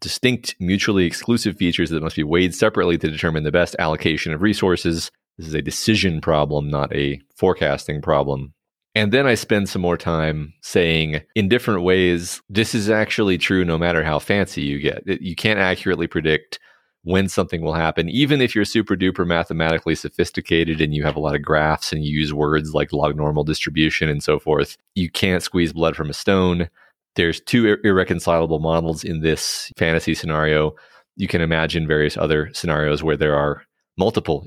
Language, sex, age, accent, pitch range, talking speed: English, male, 30-49, American, 75-95 Hz, 180 wpm